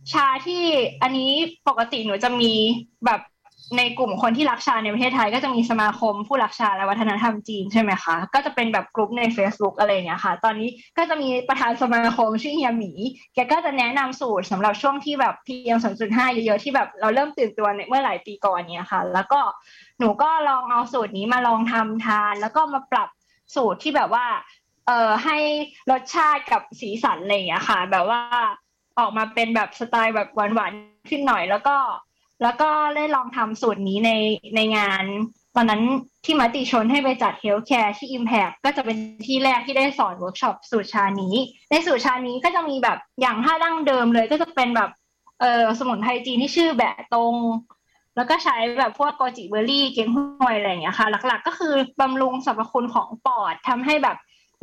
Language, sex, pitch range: Thai, female, 220-270 Hz